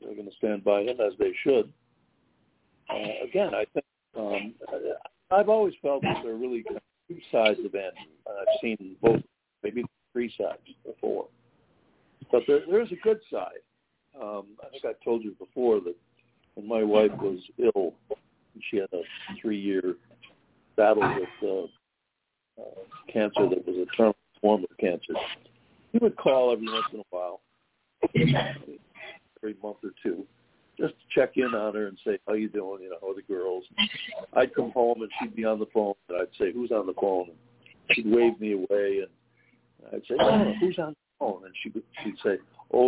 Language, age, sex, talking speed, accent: English, 60-79, male, 195 wpm, American